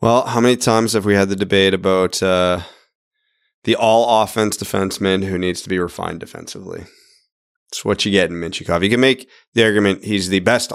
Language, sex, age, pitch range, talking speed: English, male, 20-39, 90-125 Hz, 190 wpm